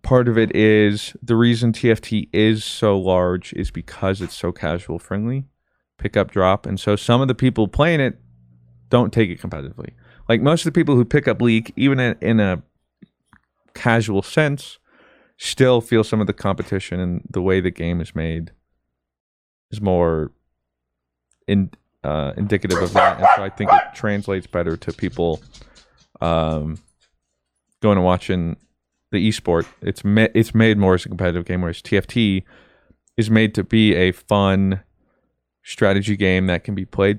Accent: American